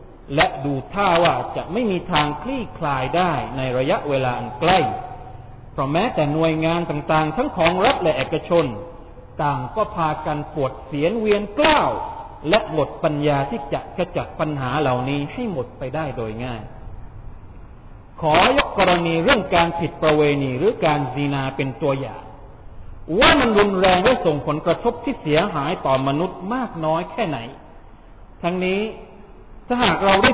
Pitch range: 130-190 Hz